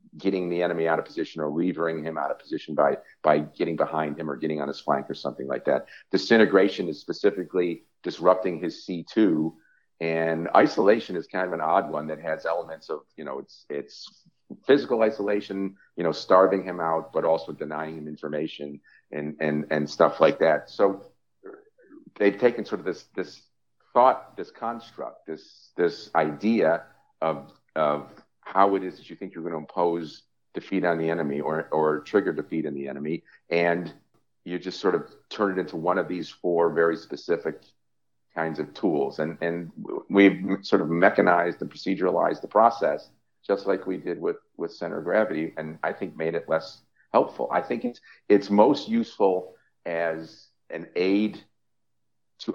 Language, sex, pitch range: English, male, 80-95 Hz